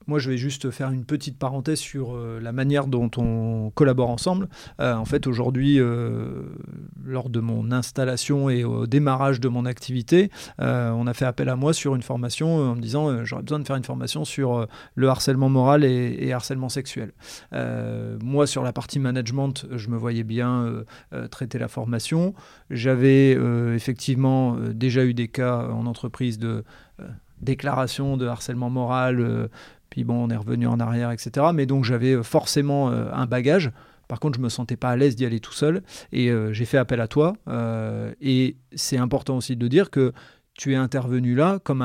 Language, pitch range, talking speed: French, 120-140 Hz, 200 wpm